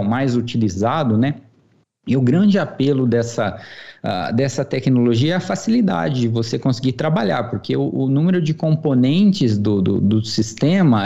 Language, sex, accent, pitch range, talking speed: Portuguese, male, Brazilian, 115-155 Hz, 145 wpm